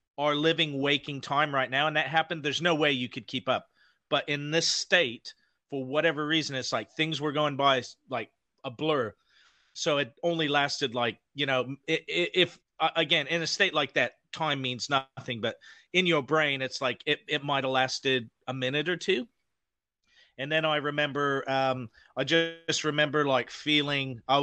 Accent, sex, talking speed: American, male, 185 wpm